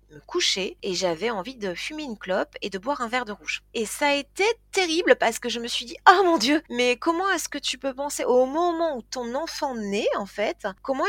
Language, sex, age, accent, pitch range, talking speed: French, female, 30-49, French, 200-265 Hz, 250 wpm